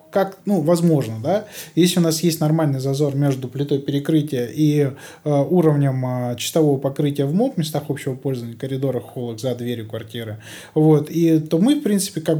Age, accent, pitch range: 20-39, native, 135-165 Hz